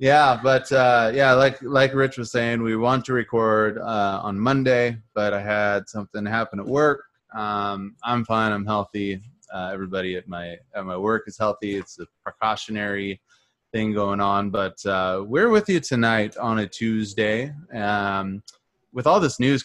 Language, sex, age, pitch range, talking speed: English, male, 20-39, 100-125 Hz, 175 wpm